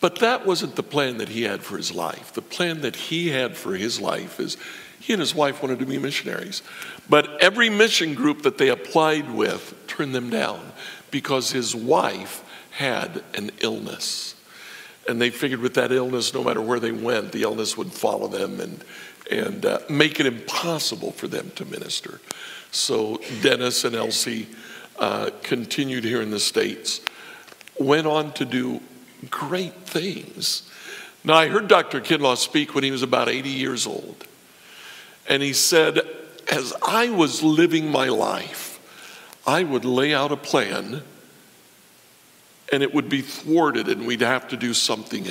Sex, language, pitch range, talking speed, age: male, English, 130-170 Hz, 165 wpm, 60-79